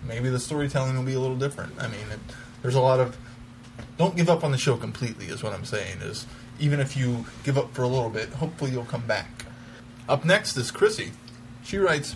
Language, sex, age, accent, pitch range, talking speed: English, male, 20-39, American, 120-145 Hz, 225 wpm